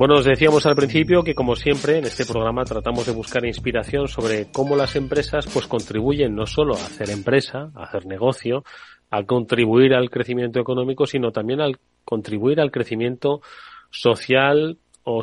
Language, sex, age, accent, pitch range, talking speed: Spanish, male, 30-49, Spanish, 115-145 Hz, 165 wpm